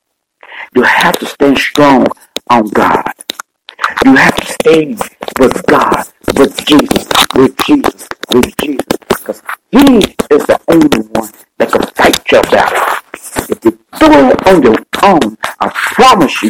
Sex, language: male, English